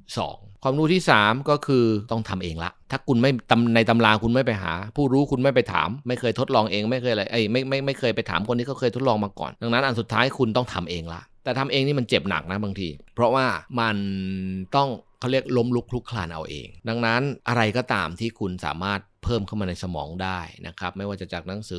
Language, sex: Thai, male